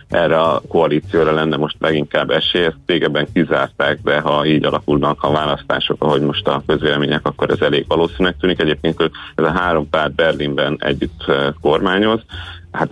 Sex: male